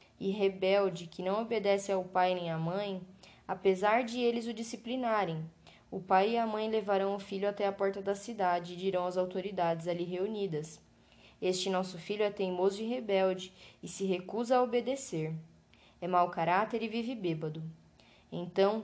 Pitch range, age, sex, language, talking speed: 180-215 Hz, 10-29, female, Portuguese, 170 wpm